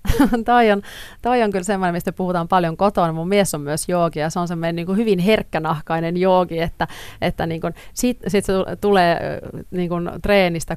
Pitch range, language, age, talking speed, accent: 165-205 Hz, Finnish, 30-49, 175 wpm, native